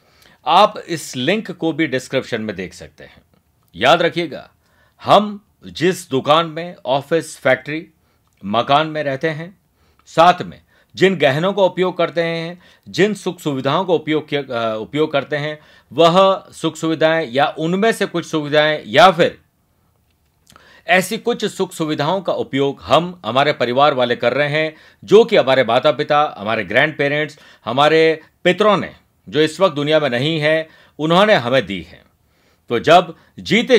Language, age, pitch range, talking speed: Hindi, 50-69, 135-170 Hz, 150 wpm